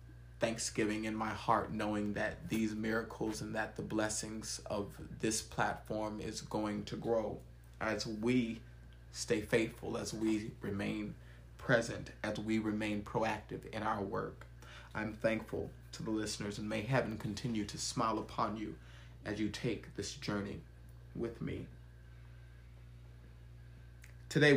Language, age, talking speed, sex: English, 30-49, 135 wpm, male